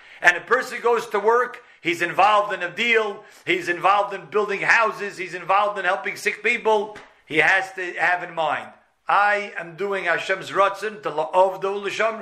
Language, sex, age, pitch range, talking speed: English, male, 50-69, 180-220 Hz, 190 wpm